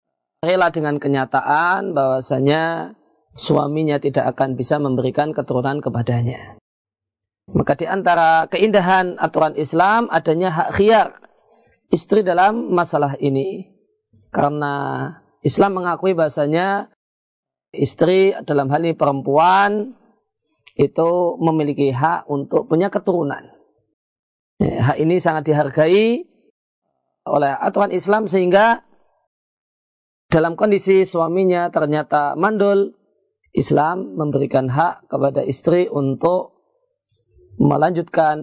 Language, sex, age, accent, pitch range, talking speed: Indonesian, male, 40-59, native, 140-195 Hz, 90 wpm